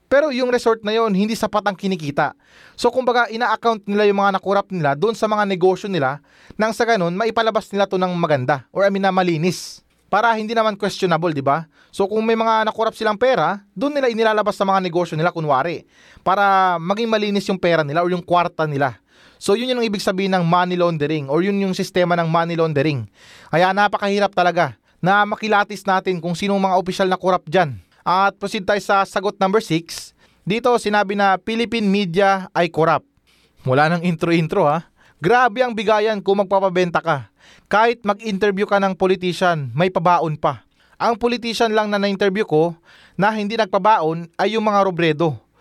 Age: 20-39